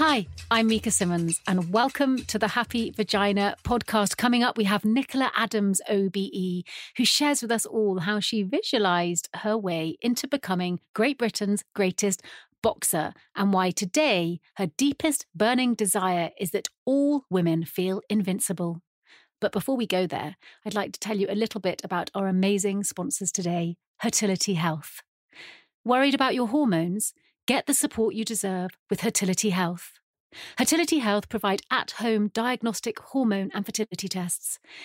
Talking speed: 150 wpm